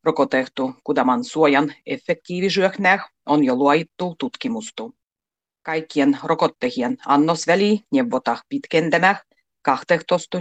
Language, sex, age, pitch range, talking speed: Finnish, female, 40-59, 145-200 Hz, 90 wpm